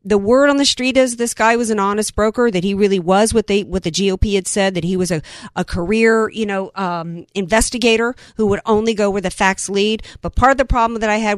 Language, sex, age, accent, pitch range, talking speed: English, female, 50-69, American, 200-275 Hz, 260 wpm